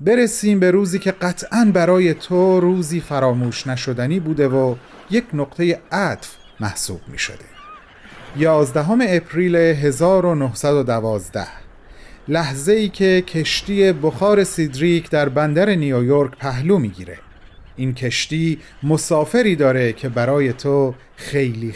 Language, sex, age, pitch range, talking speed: Persian, male, 40-59, 135-200 Hz, 110 wpm